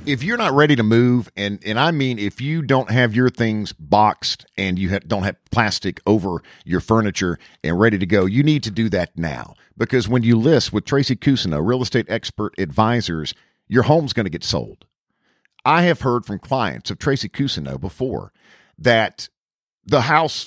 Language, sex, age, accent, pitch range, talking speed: English, male, 50-69, American, 110-150 Hz, 190 wpm